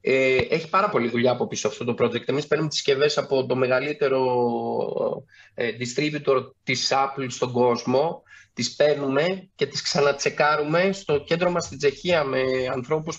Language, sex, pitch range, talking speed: Greek, male, 135-185 Hz, 160 wpm